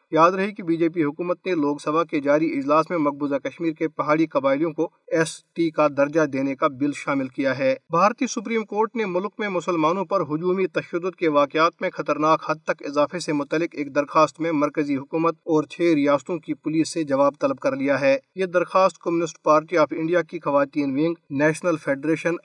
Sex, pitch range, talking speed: male, 150-175 Hz, 205 wpm